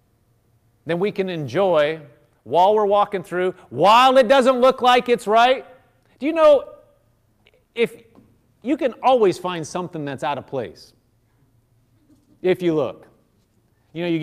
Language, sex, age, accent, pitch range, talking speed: English, male, 40-59, American, 150-220 Hz, 145 wpm